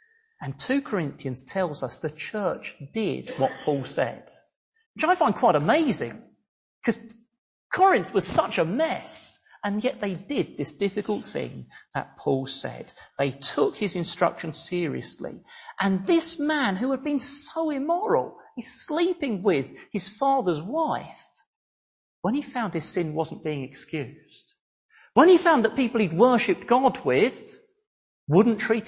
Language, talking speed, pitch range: English, 145 wpm, 160-260 Hz